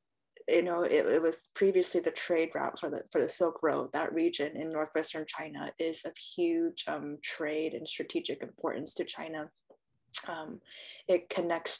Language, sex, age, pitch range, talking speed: English, female, 20-39, 155-185 Hz, 170 wpm